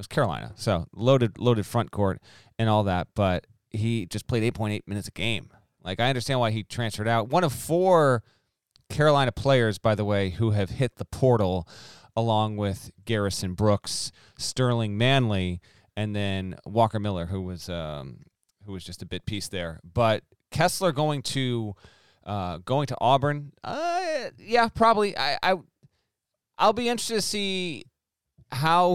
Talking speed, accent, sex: 165 wpm, American, male